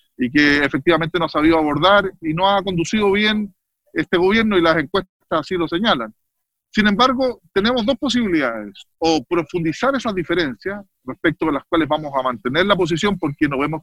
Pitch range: 150-195 Hz